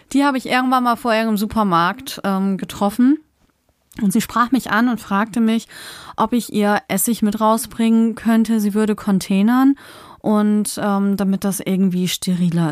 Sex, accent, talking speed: female, German, 160 wpm